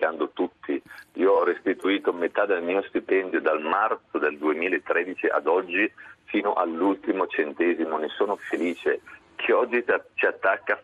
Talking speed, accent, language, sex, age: 135 wpm, native, Italian, male, 40-59